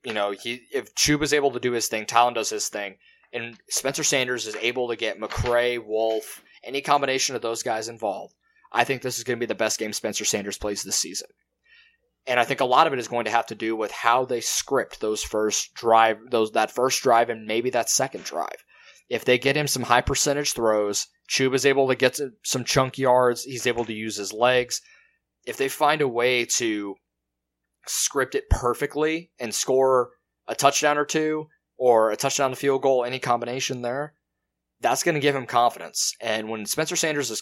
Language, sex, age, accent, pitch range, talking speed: English, male, 20-39, American, 110-140 Hz, 215 wpm